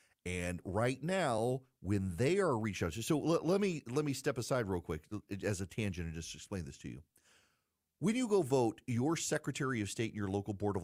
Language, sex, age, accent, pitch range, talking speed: English, male, 40-59, American, 95-140 Hz, 225 wpm